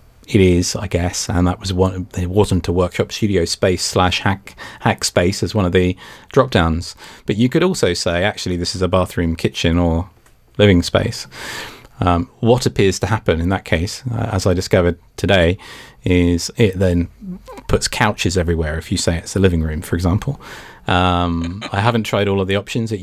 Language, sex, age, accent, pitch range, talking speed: English, male, 30-49, British, 90-105 Hz, 195 wpm